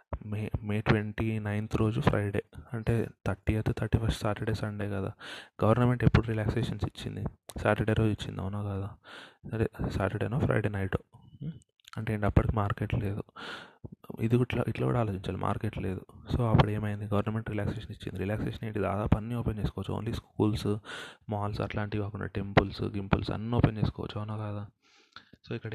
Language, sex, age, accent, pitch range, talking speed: Telugu, male, 20-39, native, 100-115 Hz, 150 wpm